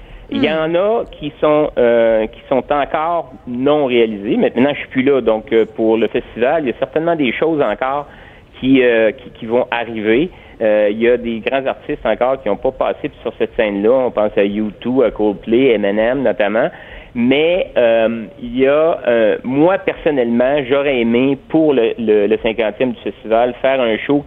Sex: male